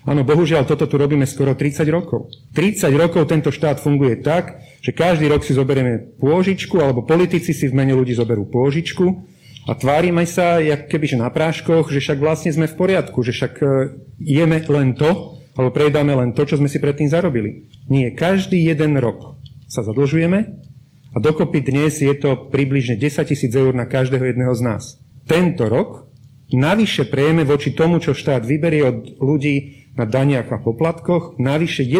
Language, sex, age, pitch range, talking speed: Slovak, male, 40-59, 125-150 Hz, 170 wpm